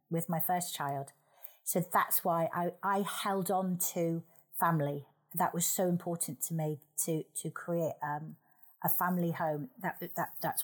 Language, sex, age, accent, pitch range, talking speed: English, female, 40-59, British, 160-185 Hz, 165 wpm